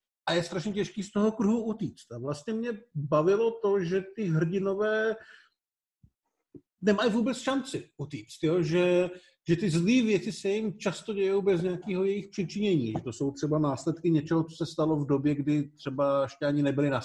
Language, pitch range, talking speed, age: Czech, 145-195 Hz, 175 wpm, 50-69